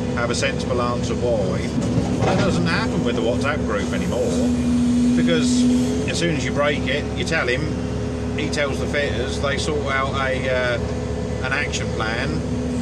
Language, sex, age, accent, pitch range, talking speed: English, male, 40-59, British, 80-125 Hz, 170 wpm